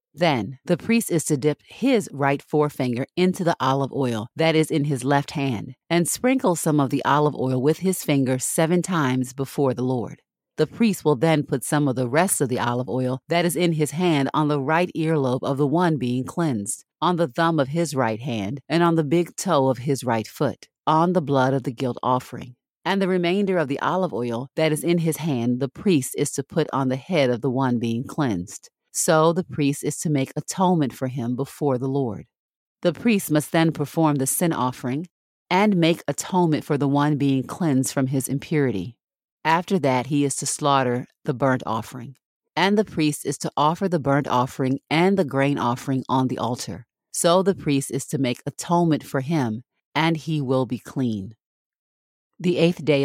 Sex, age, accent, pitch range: female, 40-59, American, 130-165 Hz